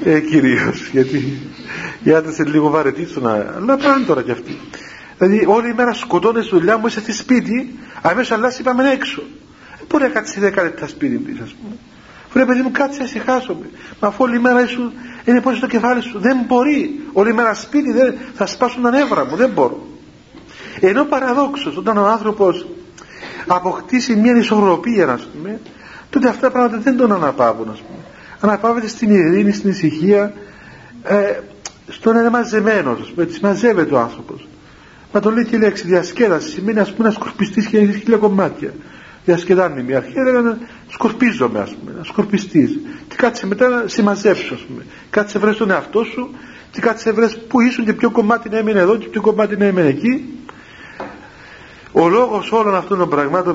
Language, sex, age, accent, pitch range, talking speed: Greek, male, 50-69, native, 195-250 Hz, 180 wpm